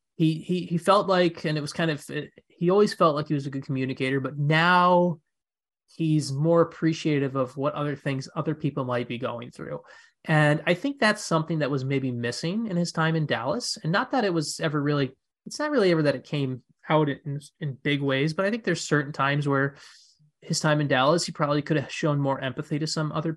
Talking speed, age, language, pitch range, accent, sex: 225 wpm, 30-49, English, 140-175 Hz, American, male